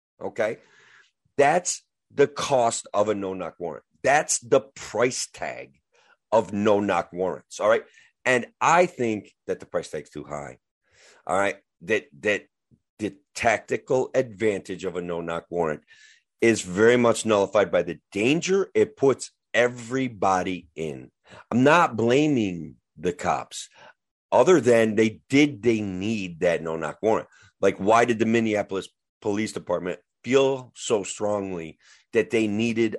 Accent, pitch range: American, 95-140 Hz